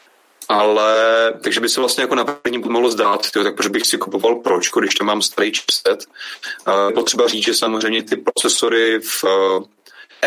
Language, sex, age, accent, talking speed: Czech, male, 30-49, native, 180 wpm